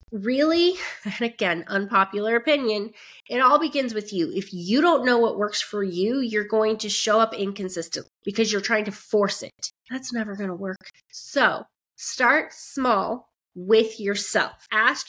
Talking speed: 165 wpm